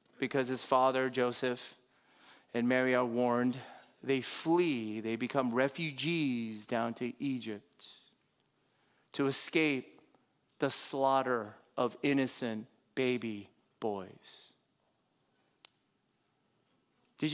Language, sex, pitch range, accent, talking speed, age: English, male, 120-160 Hz, American, 85 wpm, 30-49